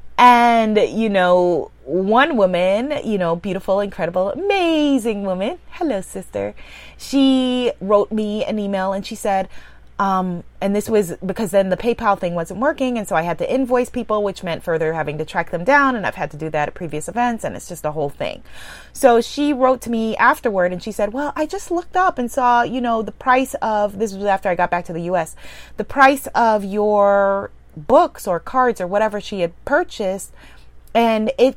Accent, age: American, 30-49